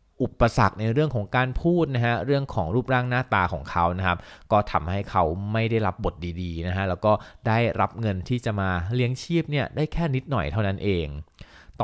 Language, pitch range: Thai, 90-115 Hz